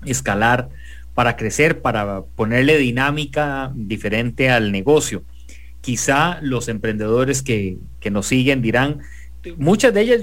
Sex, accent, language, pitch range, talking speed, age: male, Mexican, English, 100-140 Hz, 115 wpm, 30-49